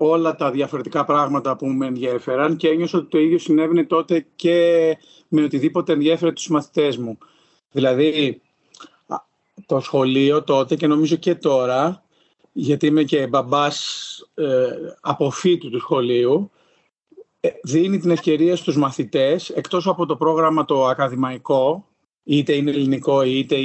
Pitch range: 145-175 Hz